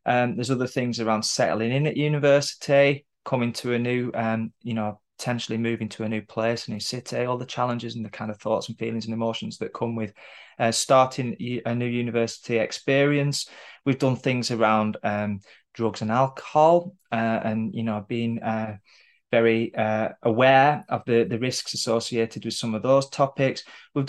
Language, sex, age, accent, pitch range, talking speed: English, male, 20-39, British, 110-130 Hz, 180 wpm